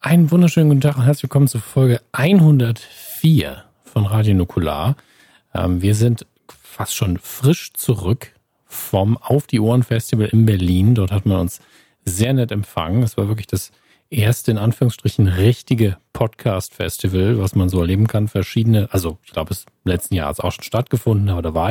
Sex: male